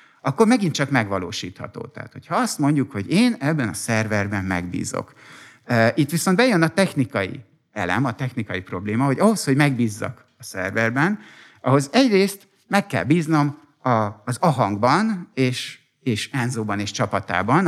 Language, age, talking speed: Hungarian, 50-69, 140 wpm